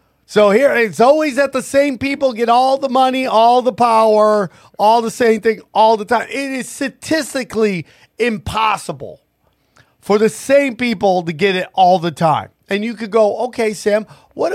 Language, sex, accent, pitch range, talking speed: English, male, American, 175-245 Hz, 175 wpm